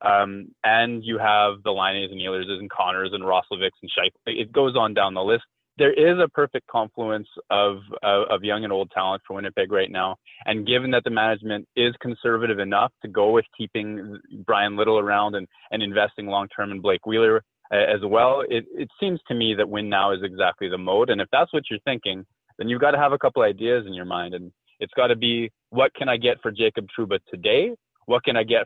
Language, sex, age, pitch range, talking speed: English, male, 20-39, 105-145 Hz, 220 wpm